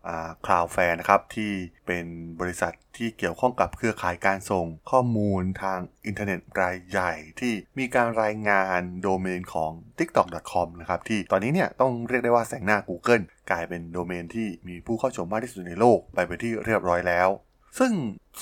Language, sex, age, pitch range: Thai, male, 20-39, 90-115 Hz